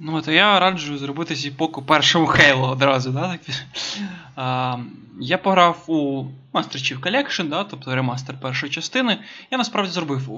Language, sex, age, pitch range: Ukrainian, male, 20-39, 140-185 Hz